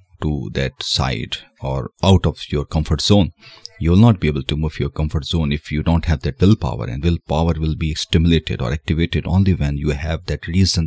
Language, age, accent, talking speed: Hindi, 30-49, native, 220 wpm